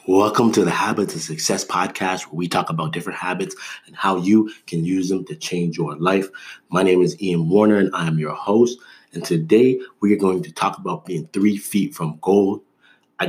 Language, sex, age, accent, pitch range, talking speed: English, male, 20-39, American, 85-100 Hz, 210 wpm